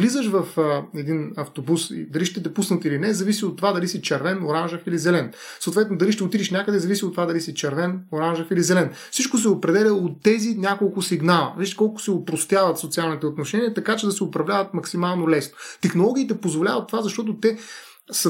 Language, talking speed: Bulgarian, 195 wpm